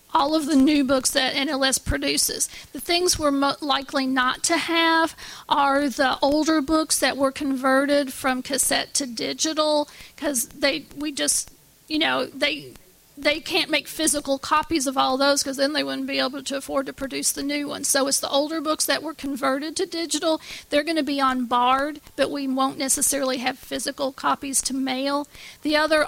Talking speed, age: 190 wpm, 50-69